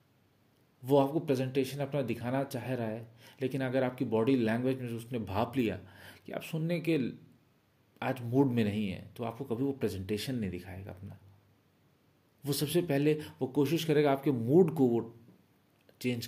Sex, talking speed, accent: male, 170 wpm, native